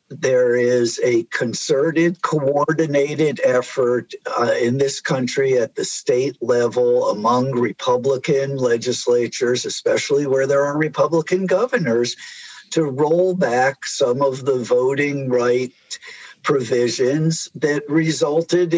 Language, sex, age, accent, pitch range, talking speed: English, male, 50-69, American, 130-190 Hz, 110 wpm